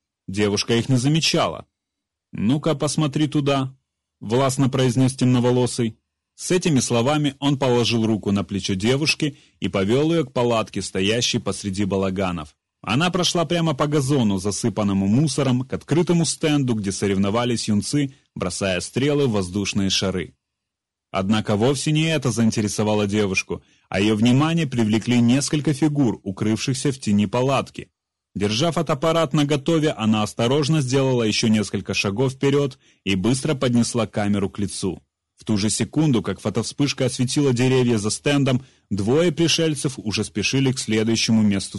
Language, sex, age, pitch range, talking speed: English, male, 30-49, 105-140 Hz, 135 wpm